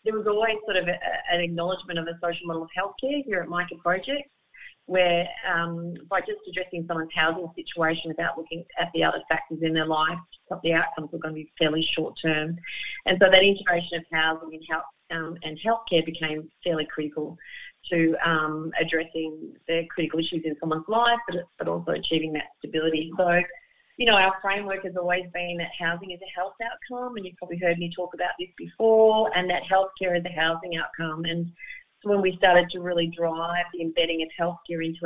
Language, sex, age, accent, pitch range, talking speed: English, female, 40-59, Australian, 165-185 Hz, 195 wpm